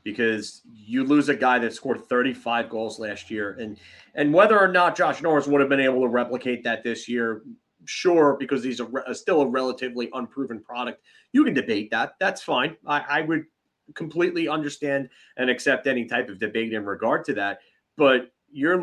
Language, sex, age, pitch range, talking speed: English, male, 30-49, 115-150 Hz, 190 wpm